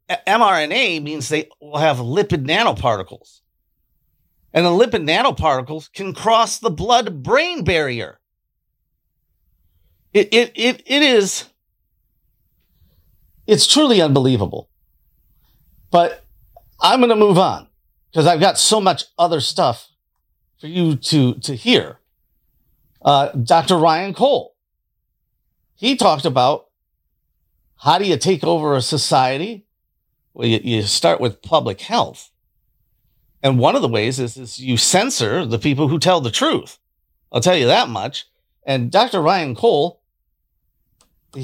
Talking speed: 125 wpm